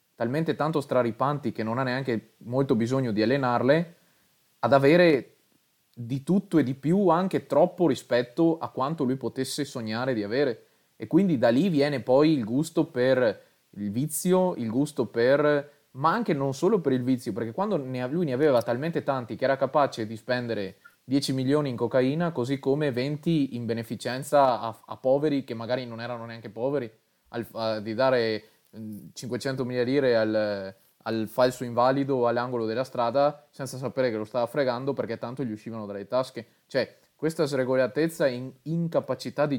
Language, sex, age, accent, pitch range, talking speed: Italian, male, 20-39, native, 115-145 Hz, 165 wpm